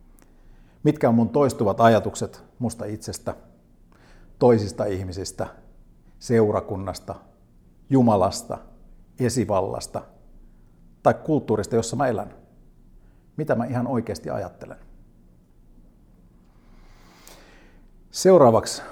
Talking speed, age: 75 wpm, 50-69